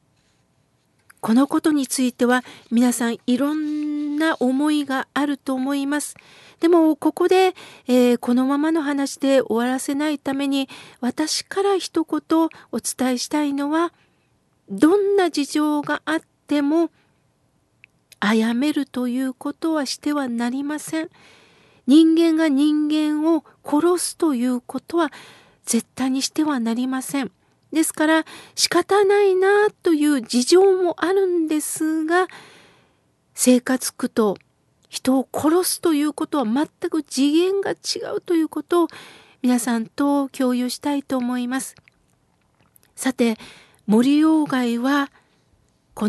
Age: 50-69